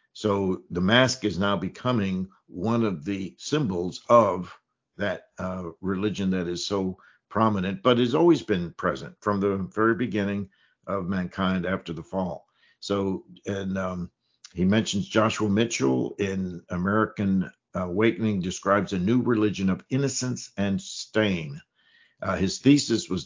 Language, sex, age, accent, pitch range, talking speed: English, male, 60-79, American, 95-115 Hz, 140 wpm